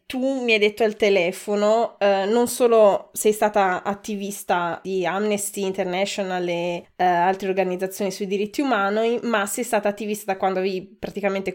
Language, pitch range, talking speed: Italian, 190-220 Hz, 155 wpm